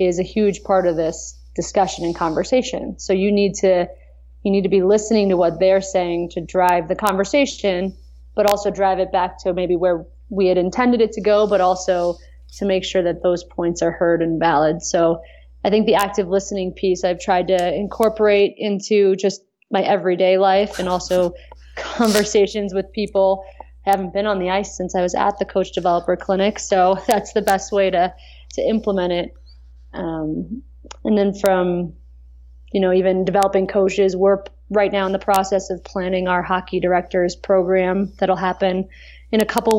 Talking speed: 185 wpm